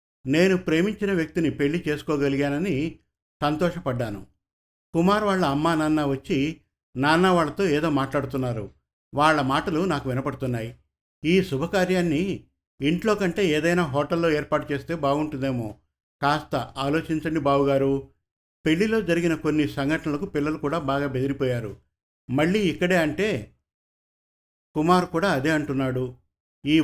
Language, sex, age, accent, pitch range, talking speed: Telugu, male, 50-69, native, 135-165 Hz, 105 wpm